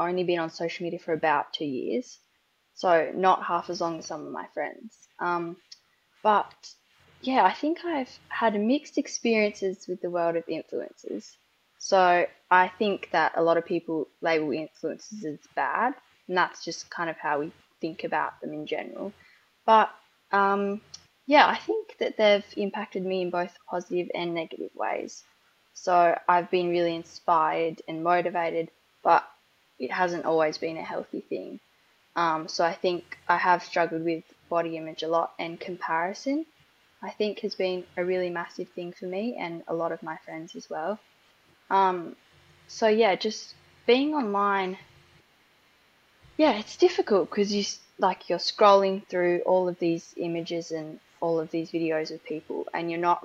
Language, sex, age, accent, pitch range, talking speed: English, female, 10-29, Australian, 165-200 Hz, 165 wpm